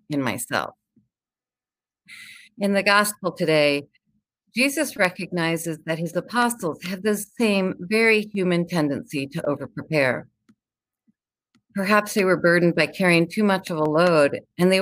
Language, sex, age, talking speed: English, female, 50-69, 130 wpm